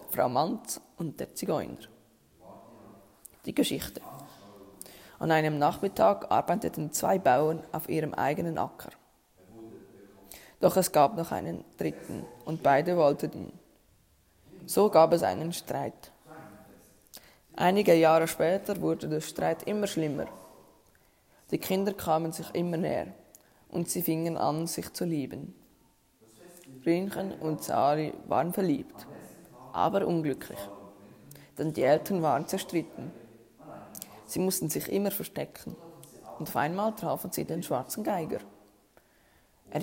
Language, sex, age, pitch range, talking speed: German, female, 20-39, 130-170 Hz, 120 wpm